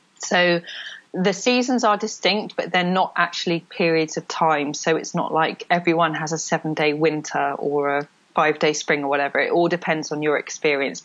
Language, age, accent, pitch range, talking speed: English, 20-39, British, 150-175 Hz, 180 wpm